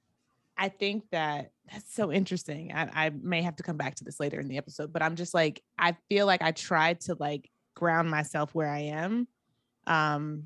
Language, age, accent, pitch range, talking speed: English, 20-39, American, 155-180 Hz, 205 wpm